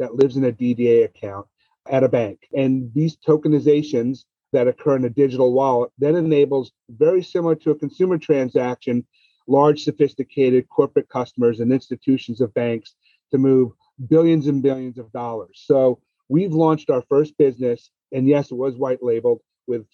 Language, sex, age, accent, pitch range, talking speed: English, male, 40-59, American, 125-150 Hz, 165 wpm